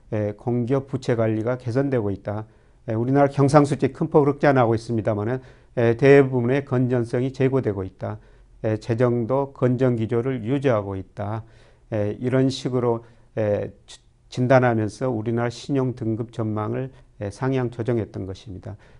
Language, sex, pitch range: Korean, male, 110-130 Hz